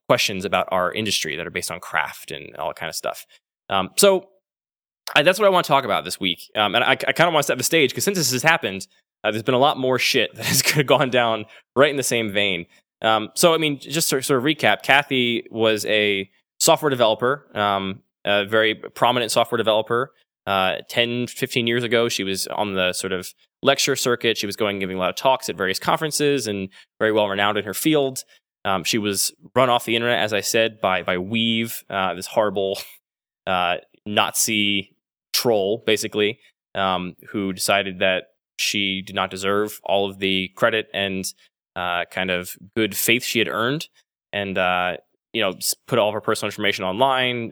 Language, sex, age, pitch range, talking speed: English, male, 10-29, 95-125 Hz, 205 wpm